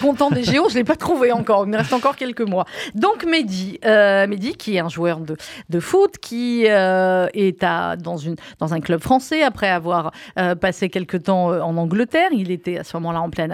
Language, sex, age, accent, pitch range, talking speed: French, female, 40-59, French, 185-260 Hz, 225 wpm